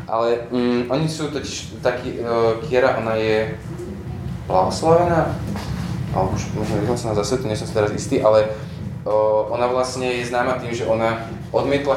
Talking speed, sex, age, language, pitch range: 115 wpm, male, 20-39, Slovak, 110-130 Hz